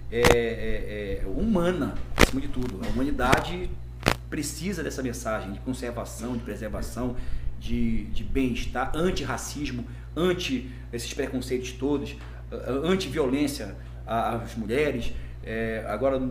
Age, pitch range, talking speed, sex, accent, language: 40-59, 110-140 Hz, 110 wpm, male, Brazilian, Portuguese